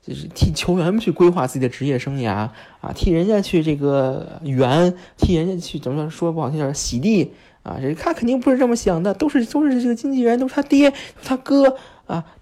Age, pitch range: 20-39, 130-180 Hz